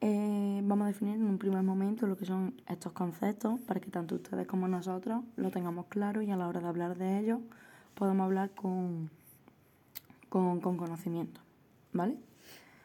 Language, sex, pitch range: Spanish, female, 185-215 Hz